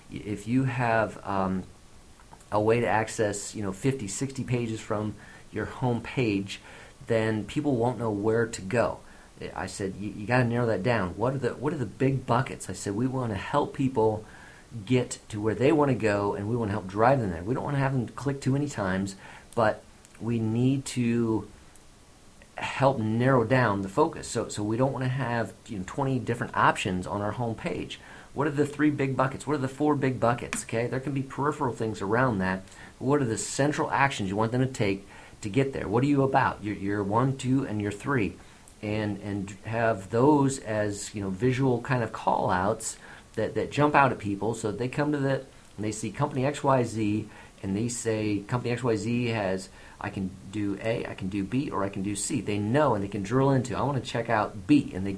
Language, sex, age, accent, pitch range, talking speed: English, male, 40-59, American, 105-130 Hz, 220 wpm